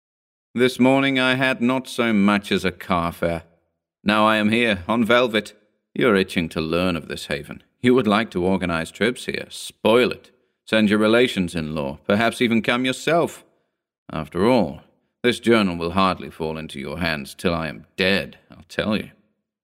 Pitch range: 90-115 Hz